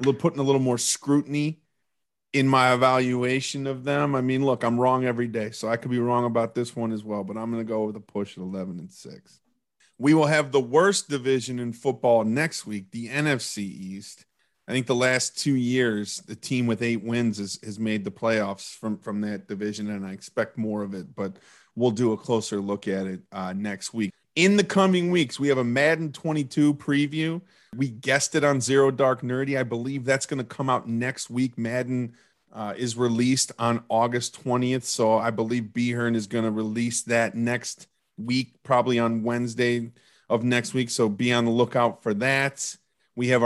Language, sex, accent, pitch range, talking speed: English, male, American, 115-140 Hz, 205 wpm